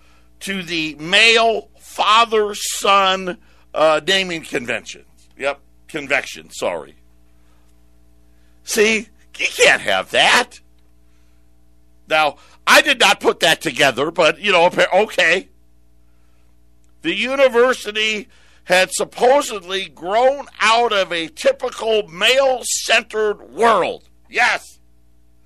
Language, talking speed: English, 85 wpm